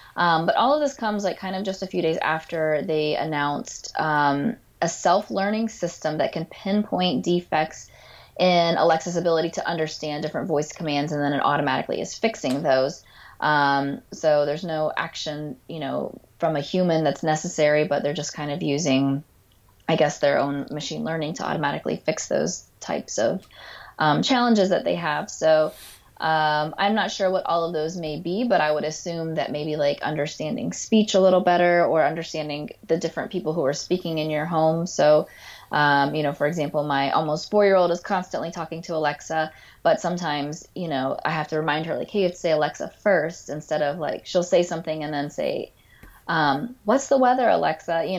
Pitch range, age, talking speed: 150-180 Hz, 20-39, 195 wpm